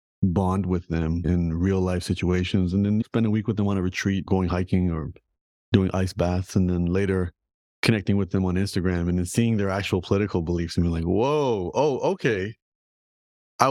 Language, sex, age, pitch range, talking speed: English, male, 30-49, 90-105 Hz, 195 wpm